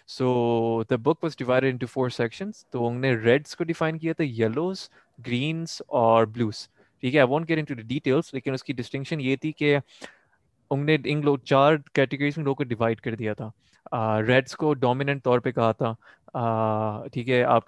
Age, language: 20-39, Urdu